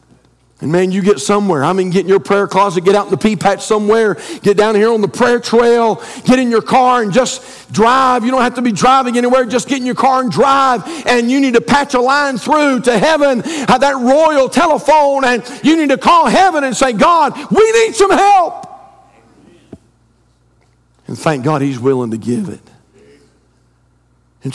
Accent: American